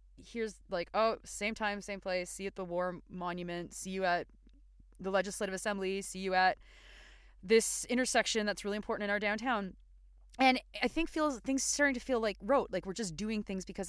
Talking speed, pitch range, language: 200 wpm, 185-245 Hz, English